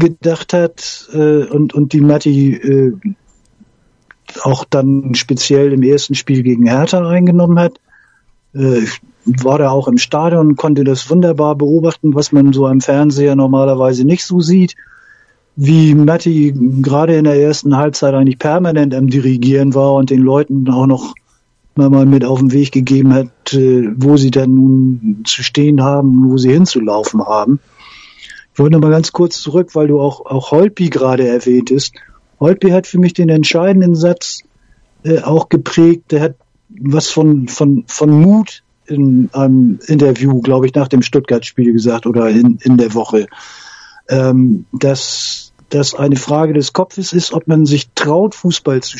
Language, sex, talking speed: German, male, 165 wpm